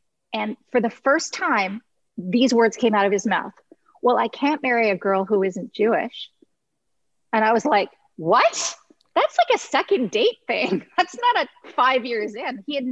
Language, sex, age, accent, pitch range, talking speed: English, female, 40-59, American, 205-265 Hz, 185 wpm